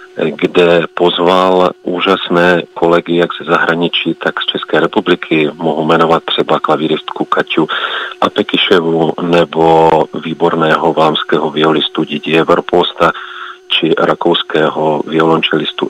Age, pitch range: 40-59, 80-90 Hz